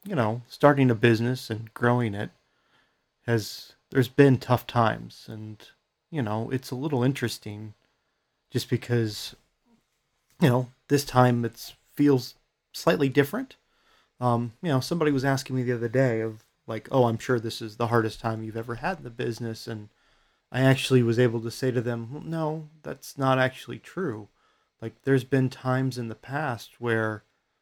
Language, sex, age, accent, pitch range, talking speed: English, male, 30-49, American, 110-130 Hz, 170 wpm